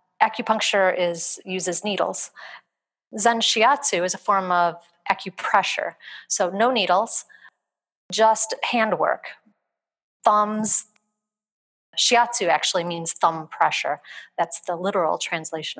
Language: English